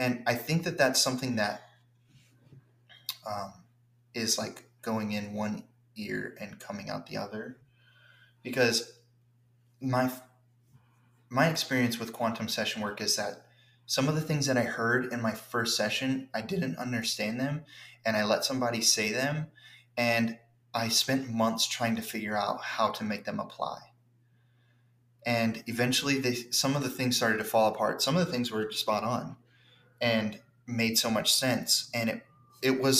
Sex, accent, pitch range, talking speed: male, American, 115-125 Hz, 165 wpm